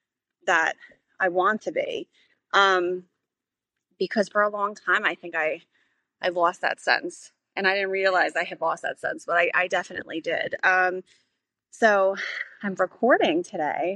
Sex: female